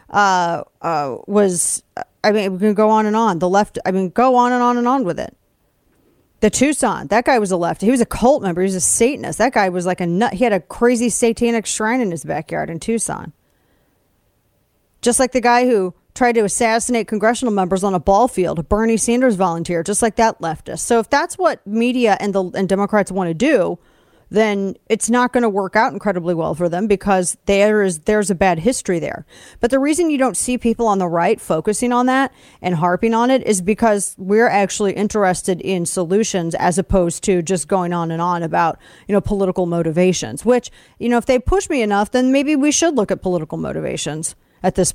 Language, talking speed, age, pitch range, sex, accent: English, 220 wpm, 40-59, 185-235 Hz, female, American